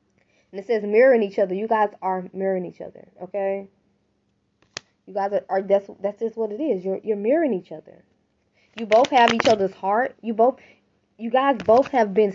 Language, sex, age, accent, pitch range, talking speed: English, female, 10-29, American, 200-270 Hz, 200 wpm